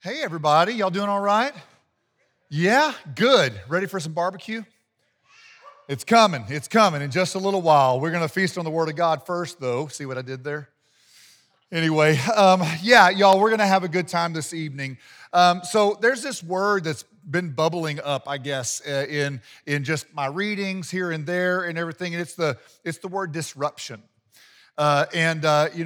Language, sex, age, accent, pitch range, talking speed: English, male, 40-59, American, 145-195 Hz, 185 wpm